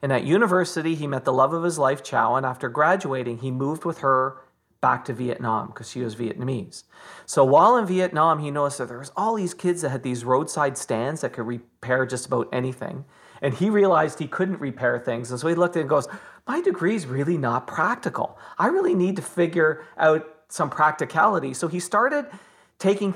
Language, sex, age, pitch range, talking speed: English, male, 40-59, 125-170 Hz, 210 wpm